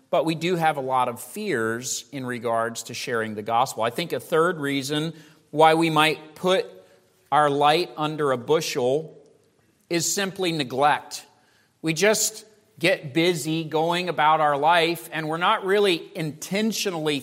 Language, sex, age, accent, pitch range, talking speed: English, male, 40-59, American, 135-180 Hz, 155 wpm